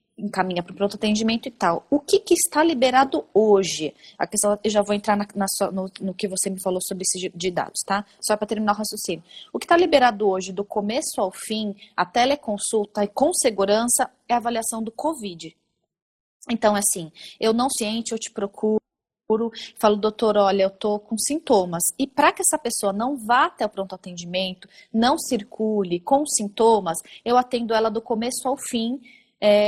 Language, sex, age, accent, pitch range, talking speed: Portuguese, female, 20-39, Brazilian, 195-245 Hz, 190 wpm